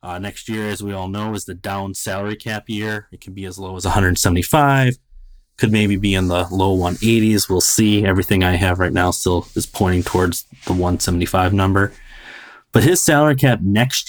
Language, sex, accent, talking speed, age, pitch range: English, male, American, 195 wpm, 20-39, 95-115 Hz